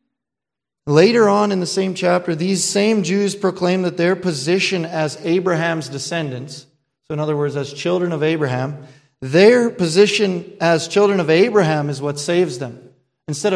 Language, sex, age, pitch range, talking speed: English, male, 40-59, 145-185 Hz, 155 wpm